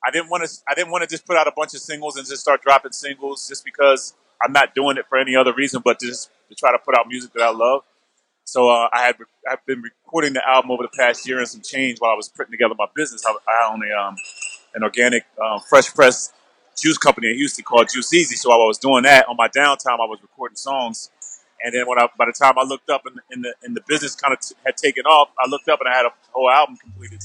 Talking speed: 280 wpm